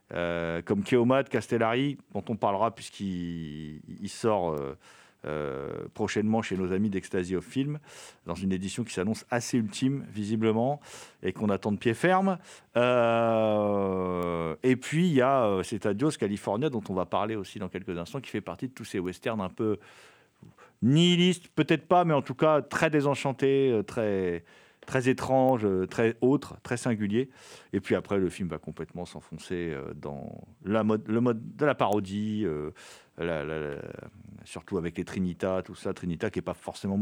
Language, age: French, 40-59